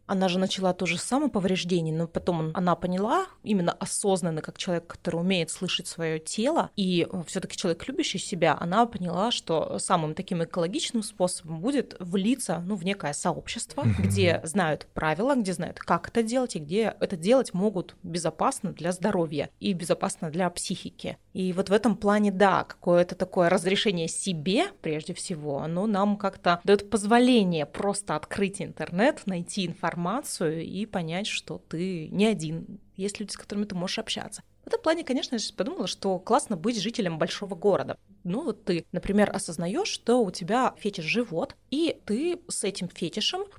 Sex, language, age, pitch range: female, Russian, 20-39, 175-220 Hz